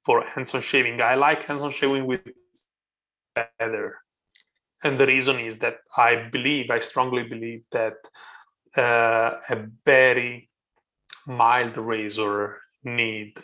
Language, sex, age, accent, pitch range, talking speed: English, male, 30-49, Italian, 115-165 Hz, 115 wpm